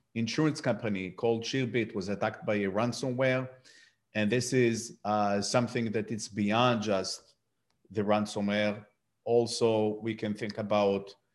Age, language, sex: 50-69, English, male